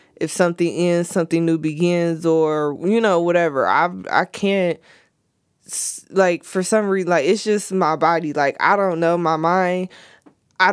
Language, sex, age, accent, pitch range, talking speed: English, female, 20-39, American, 160-190 Hz, 160 wpm